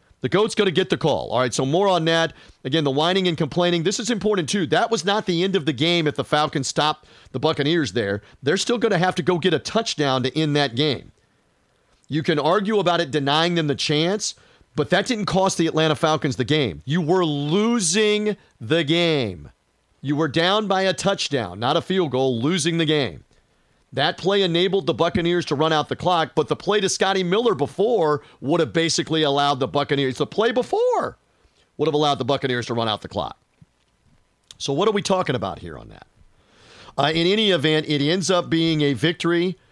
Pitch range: 140-180 Hz